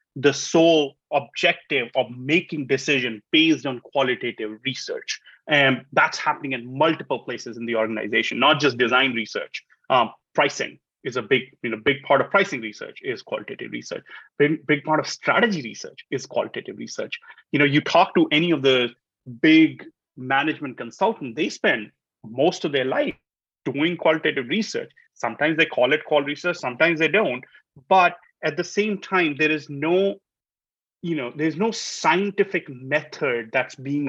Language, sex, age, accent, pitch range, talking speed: English, male, 30-49, Indian, 135-185 Hz, 160 wpm